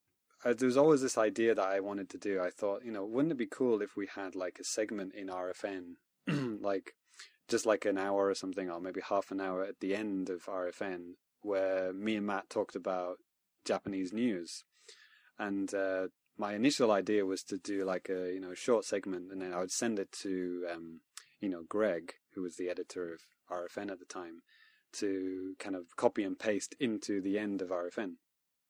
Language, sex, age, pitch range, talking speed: English, male, 20-39, 90-110 Hz, 205 wpm